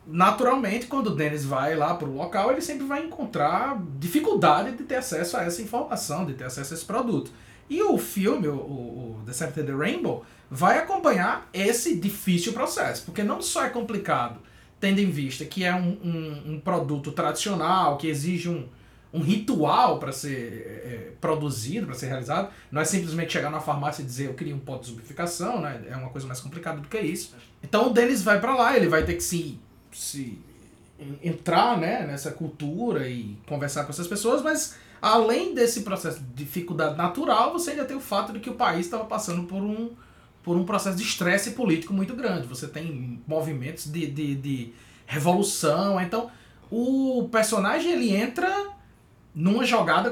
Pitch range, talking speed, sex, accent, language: 150-225 Hz, 180 wpm, male, Brazilian, Portuguese